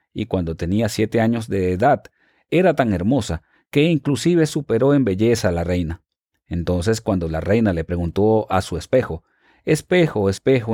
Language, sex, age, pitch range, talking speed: English, male, 40-59, 95-130 Hz, 160 wpm